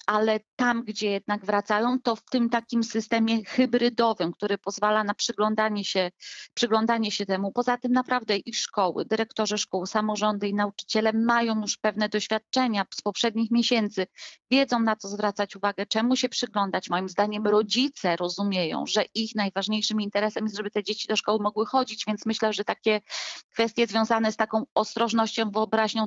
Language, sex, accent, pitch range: Polish, female, native, 205-230 Hz